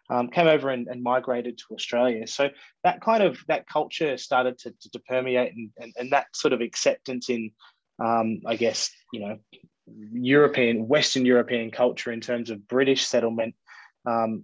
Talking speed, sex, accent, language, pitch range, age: 175 wpm, male, Australian, English, 120-140 Hz, 20-39